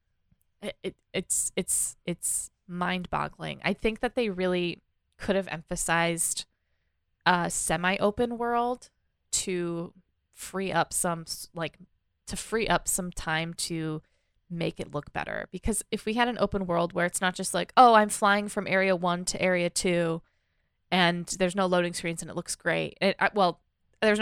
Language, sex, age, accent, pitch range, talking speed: English, female, 20-39, American, 170-200 Hz, 160 wpm